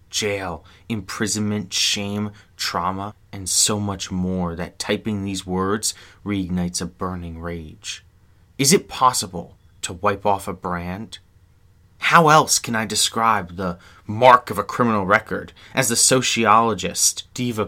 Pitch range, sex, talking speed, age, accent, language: 90-110 Hz, male, 130 wpm, 30-49, American, English